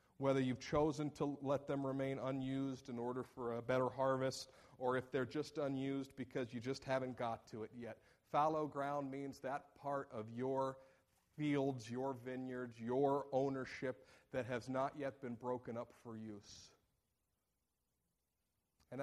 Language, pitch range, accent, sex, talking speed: English, 115-135 Hz, American, male, 155 wpm